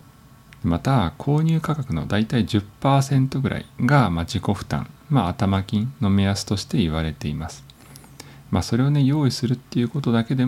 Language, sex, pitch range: Japanese, male, 90-135 Hz